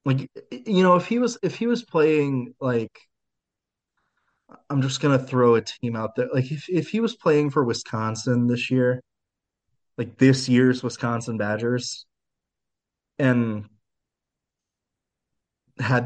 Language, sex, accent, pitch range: English, male, American, 110-135 Hz